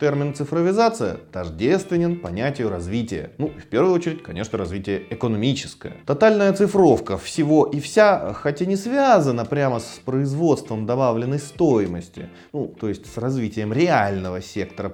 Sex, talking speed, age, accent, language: male, 130 wpm, 30-49, native, Russian